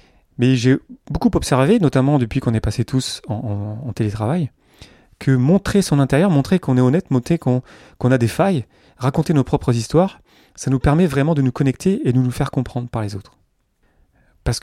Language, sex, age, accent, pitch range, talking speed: French, male, 30-49, French, 110-135 Hz, 195 wpm